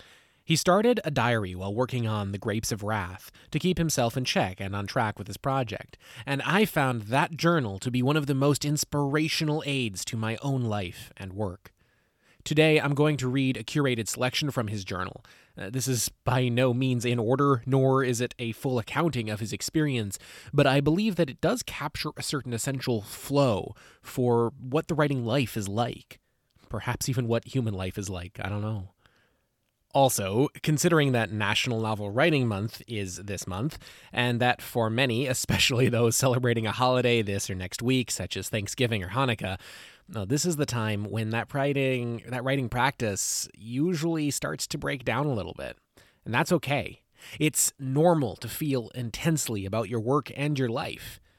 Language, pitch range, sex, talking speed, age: English, 110-140 Hz, male, 180 wpm, 20-39